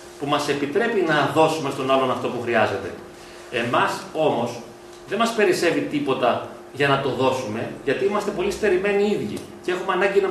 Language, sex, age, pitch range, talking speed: Greek, male, 40-59, 135-205 Hz, 175 wpm